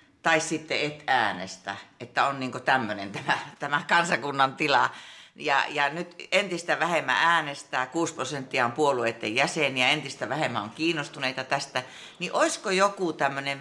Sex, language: female, Finnish